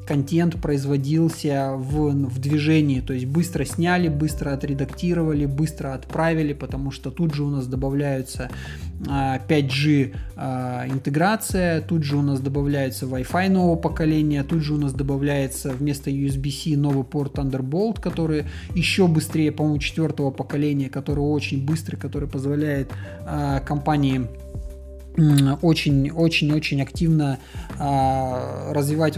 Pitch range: 135-155 Hz